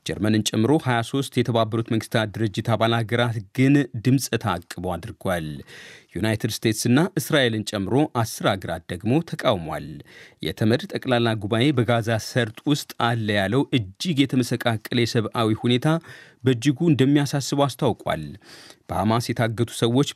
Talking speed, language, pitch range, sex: 90 wpm, Amharic, 110-130 Hz, male